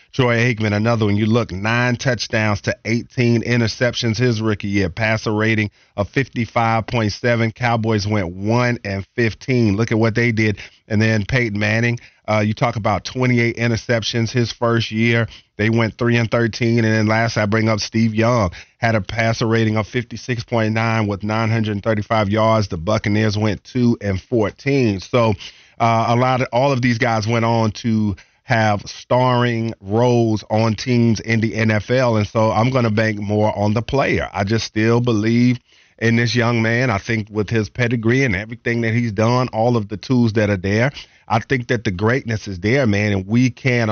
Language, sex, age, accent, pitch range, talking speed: English, male, 40-59, American, 105-120 Hz, 185 wpm